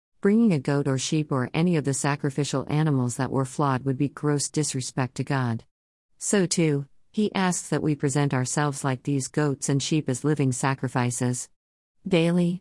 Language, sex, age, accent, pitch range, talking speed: English, female, 50-69, American, 130-165 Hz, 175 wpm